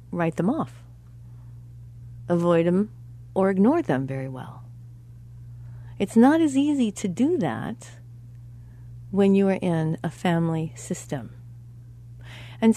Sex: female